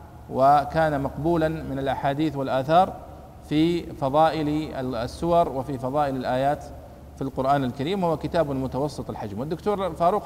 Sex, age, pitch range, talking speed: male, 40-59, 125-155 Hz, 115 wpm